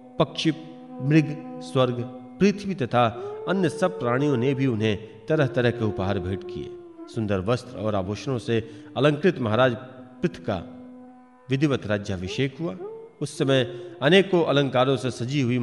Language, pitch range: Hindi, 115-160 Hz